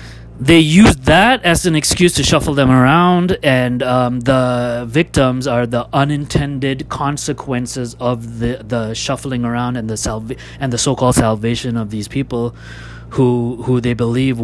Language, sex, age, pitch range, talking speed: English, male, 30-49, 115-140 Hz, 155 wpm